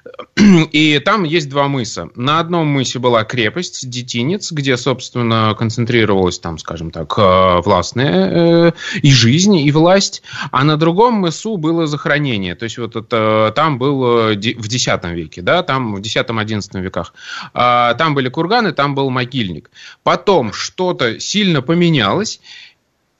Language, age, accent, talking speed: Russian, 20-39, native, 135 wpm